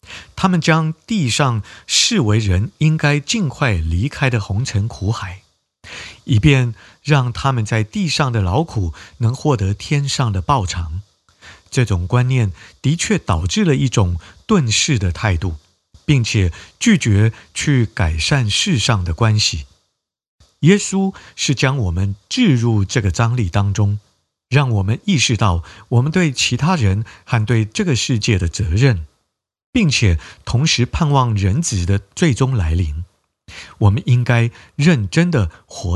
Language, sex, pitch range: Chinese, male, 95-140 Hz